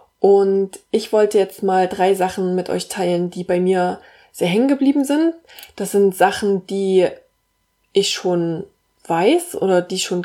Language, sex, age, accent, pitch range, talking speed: German, female, 20-39, German, 180-205 Hz, 160 wpm